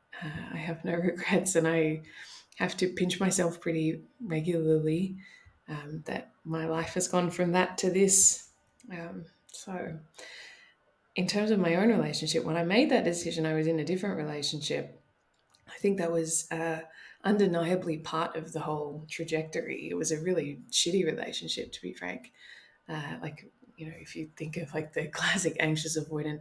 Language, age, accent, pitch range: English, 20-39, Australian, 155-180 Hz